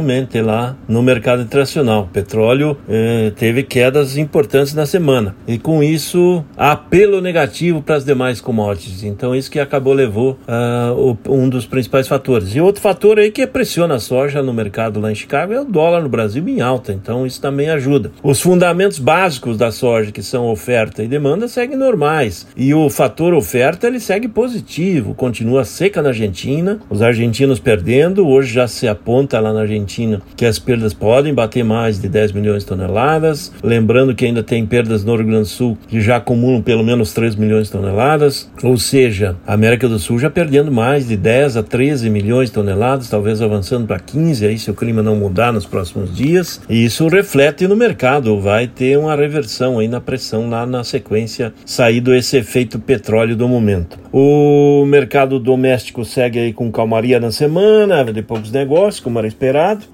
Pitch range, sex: 110-145 Hz, male